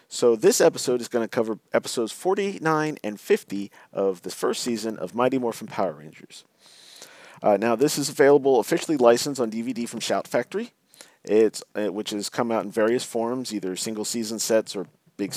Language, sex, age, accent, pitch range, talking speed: English, male, 40-59, American, 105-130 Hz, 185 wpm